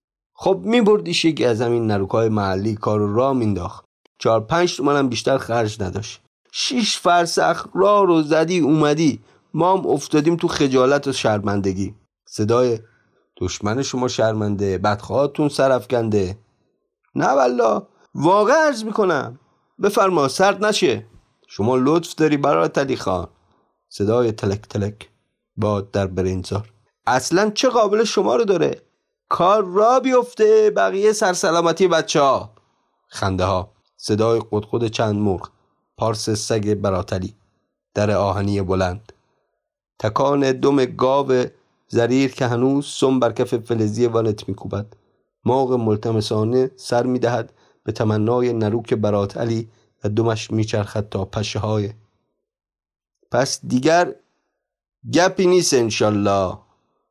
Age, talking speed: 30-49, 115 wpm